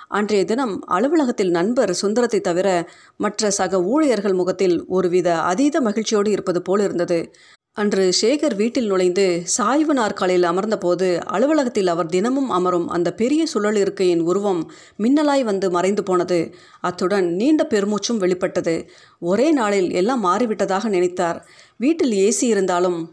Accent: native